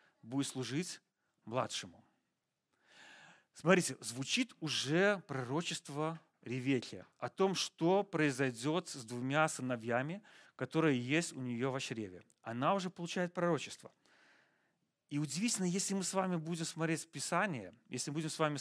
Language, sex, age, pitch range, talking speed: Russian, male, 40-59, 135-170 Hz, 125 wpm